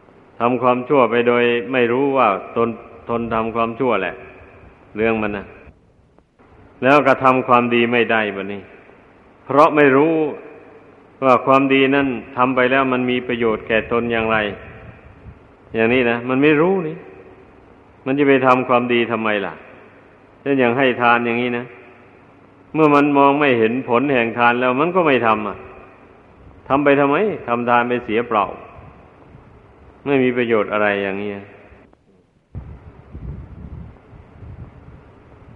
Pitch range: 105-130 Hz